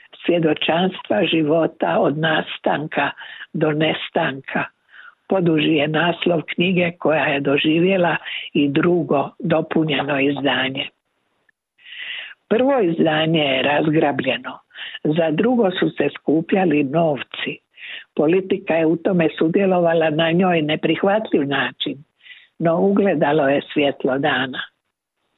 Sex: female